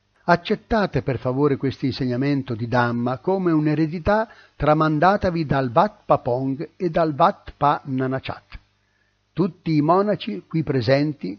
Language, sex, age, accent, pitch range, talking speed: Italian, male, 60-79, native, 105-165 Hz, 120 wpm